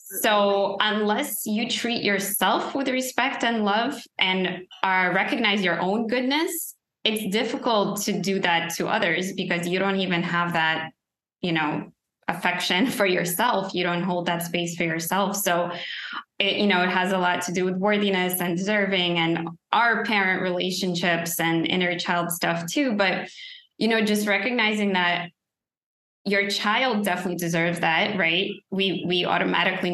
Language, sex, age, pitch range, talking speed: English, female, 20-39, 175-210 Hz, 150 wpm